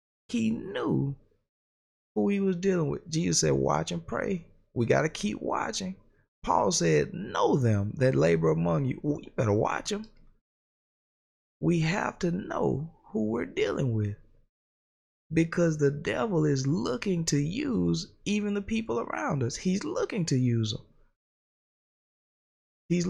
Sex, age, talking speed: male, 20-39, 145 wpm